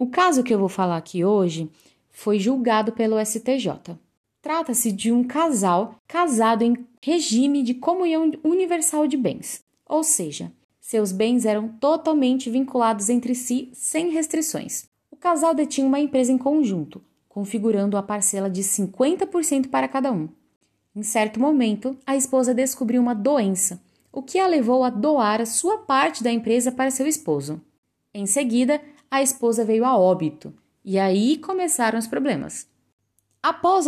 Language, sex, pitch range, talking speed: Portuguese, female, 210-290 Hz, 150 wpm